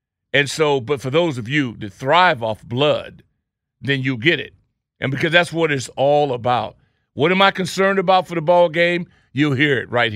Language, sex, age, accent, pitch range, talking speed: English, male, 50-69, American, 140-205 Hz, 205 wpm